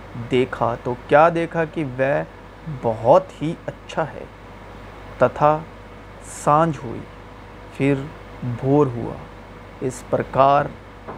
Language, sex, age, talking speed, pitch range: Urdu, male, 30-49, 100 wpm, 100-155 Hz